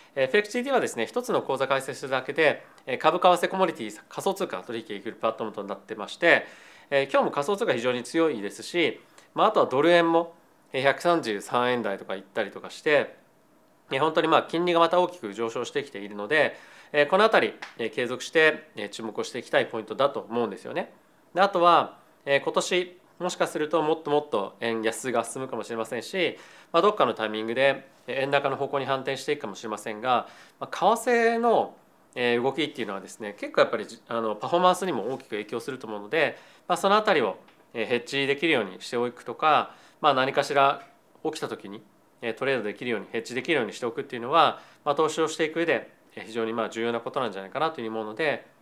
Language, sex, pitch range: Japanese, male, 115-165 Hz